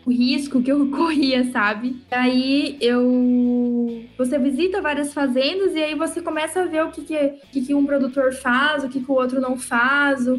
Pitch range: 235-275 Hz